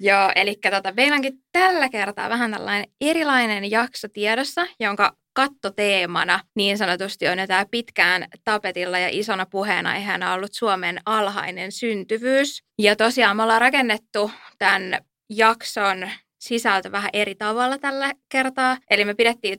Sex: female